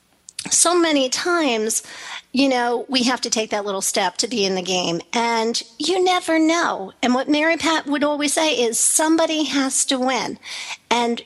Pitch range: 225-315 Hz